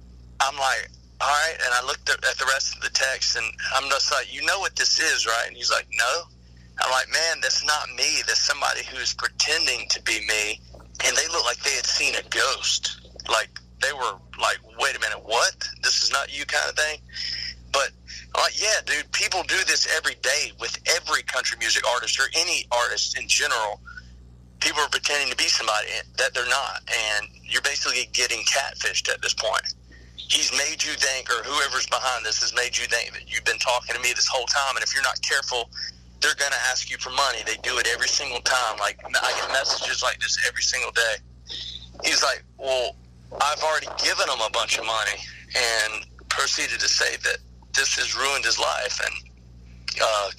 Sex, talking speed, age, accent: male, 205 wpm, 40-59, American